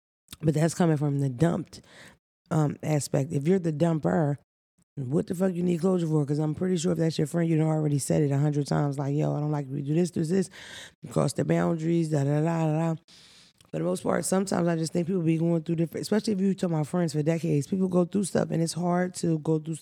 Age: 20-39